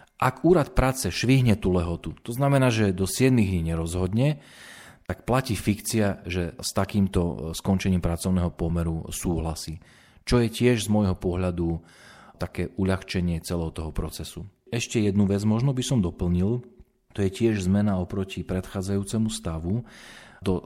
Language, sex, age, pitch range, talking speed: Slovak, male, 40-59, 85-105 Hz, 140 wpm